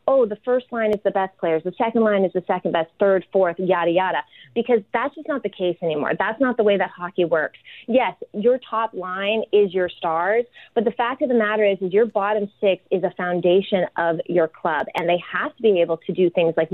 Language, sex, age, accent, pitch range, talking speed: English, female, 30-49, American, 175-220 Hz, 240 wpm